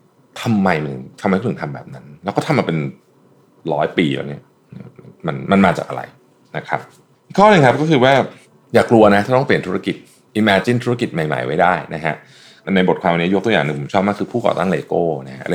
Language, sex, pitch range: Thai, male, 85-120 Hz